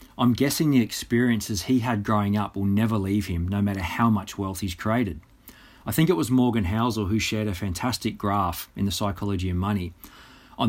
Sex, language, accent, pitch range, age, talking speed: male, English, Australian, 100-120 Hz, 40-59, 200 wpm